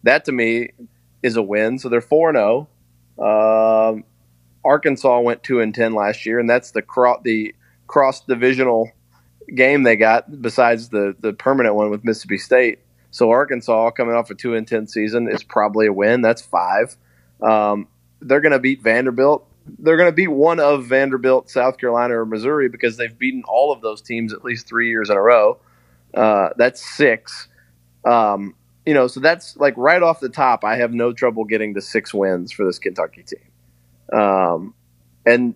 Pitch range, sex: 105-130 Hz, male